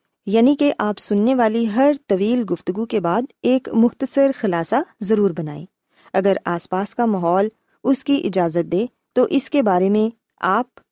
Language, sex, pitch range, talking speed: Urdu, female, 175-235 Hz, 165 wpm